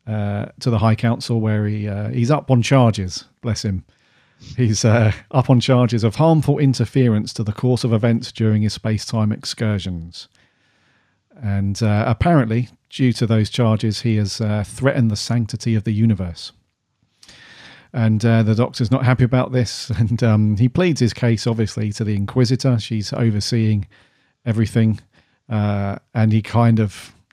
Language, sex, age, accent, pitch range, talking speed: English, male, 40-59, British, 110-125 Hz, 160 wpm